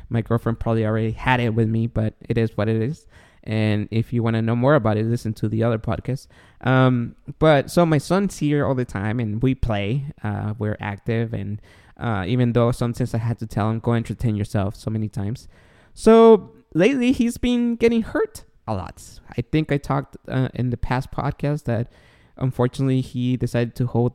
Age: 20-39